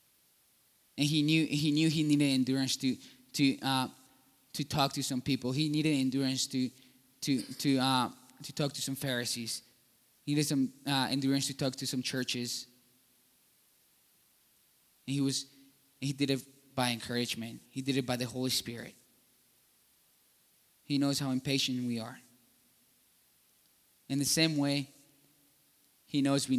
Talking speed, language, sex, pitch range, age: 150 wpm, English, male, 125-140 Hz, 20-39